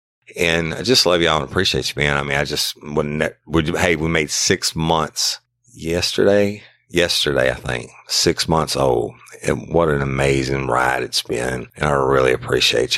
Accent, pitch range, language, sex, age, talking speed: American, 70-80 Hz, English, male, 50-69, 170 wpm